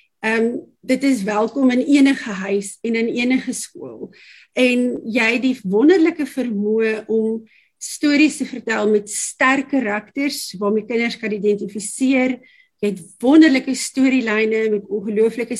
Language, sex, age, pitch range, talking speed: English, female, 50-69, 210-260 Hz, 130 wpm